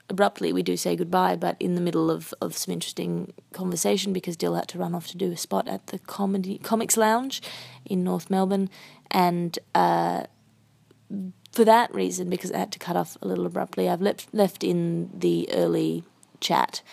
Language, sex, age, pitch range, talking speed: English, female, 20-39, 155-195 Hz, 190 wpm